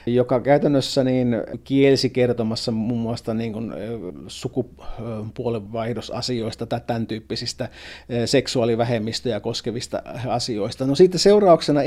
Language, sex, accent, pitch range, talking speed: Finnish, male, native, 120-140 Hz, 90 wpm